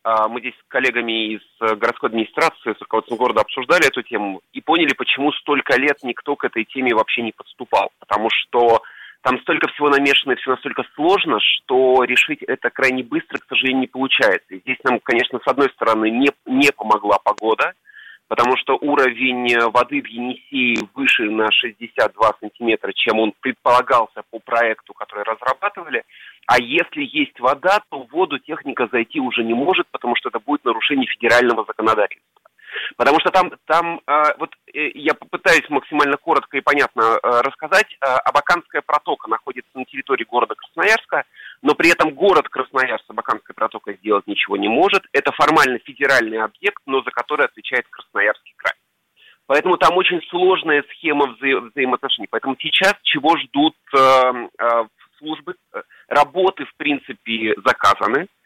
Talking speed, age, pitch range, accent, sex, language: 155 wpm, 30-49, 115-155 Hz, native, male, Russian